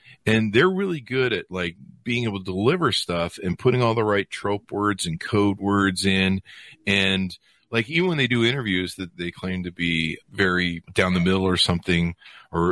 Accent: American